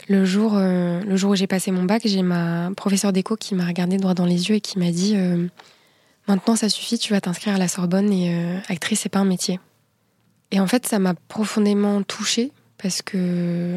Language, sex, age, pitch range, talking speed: French, female, 20-39, 180-205 Hz, 230 wpm